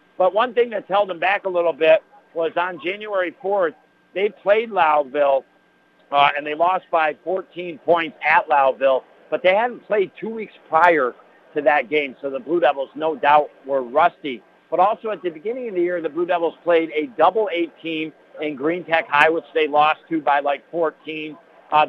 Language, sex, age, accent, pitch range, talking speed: English, male, 60-79, American, 155-190 Hz, 195 wpm